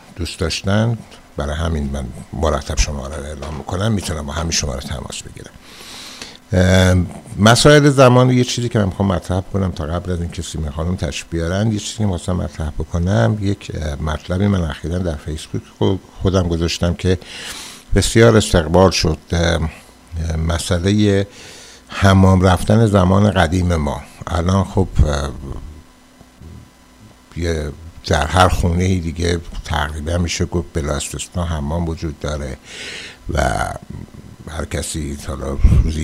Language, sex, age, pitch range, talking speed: Persian, male, 60-79, 75-95 Hz, 125 wpm